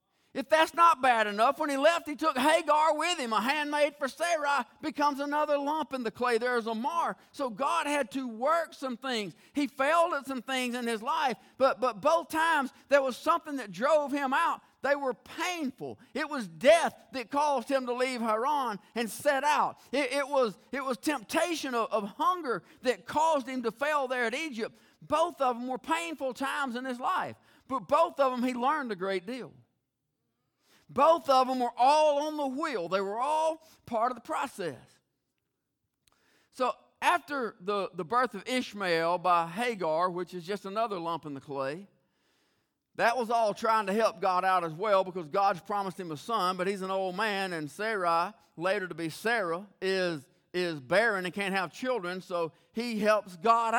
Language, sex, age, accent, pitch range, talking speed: English, male, 50-69, American, 200-285 Hz, 190 wpm